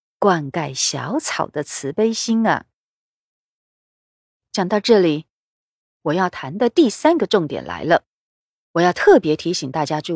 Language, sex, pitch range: Chinese, female, 150-225 Hz